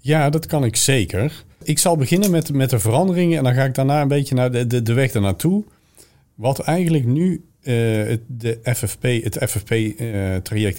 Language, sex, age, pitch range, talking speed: Dutch, male, 40-59, 100-140 Hz, 185 wpm